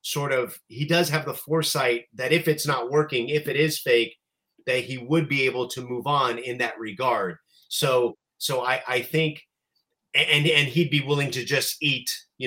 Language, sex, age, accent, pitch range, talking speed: English, male, 30-49, American, 115-155 Hz, 195 wpm